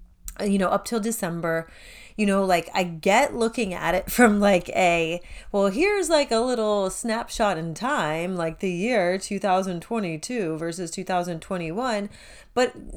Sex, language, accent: female, English, American